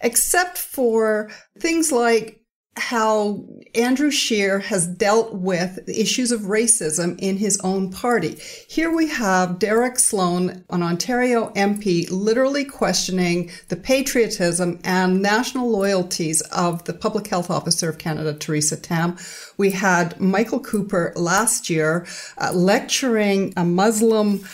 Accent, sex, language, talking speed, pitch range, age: American, female, English, 125 wpm, 180-235 Hz, 50-69